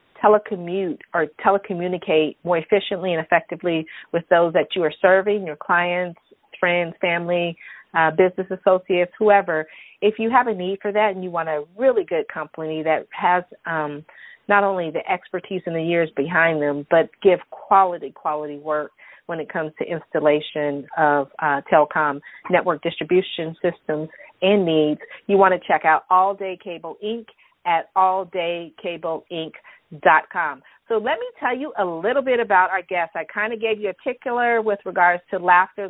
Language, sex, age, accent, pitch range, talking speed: English, female, 40-59, American, 165-195 Hz, 170 wpm